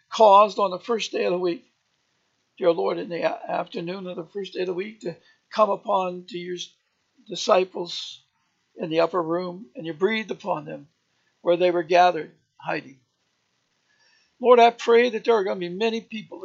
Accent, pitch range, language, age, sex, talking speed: American, 175-235 Hz, English, 60-79, male, 185 wpm